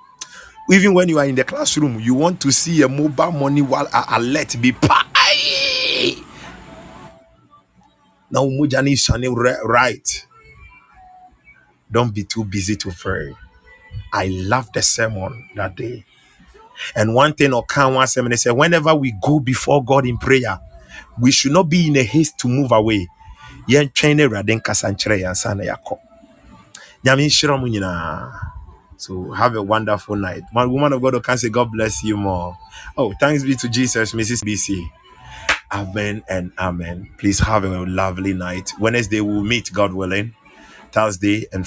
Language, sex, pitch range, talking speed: English, male, 95-135 Hz, 135 wpm